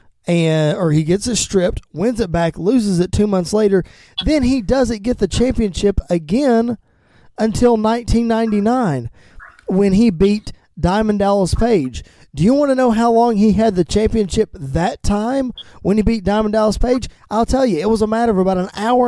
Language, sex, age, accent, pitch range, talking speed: English, male, 20-39, American, 170-230 Hz, 185 wpm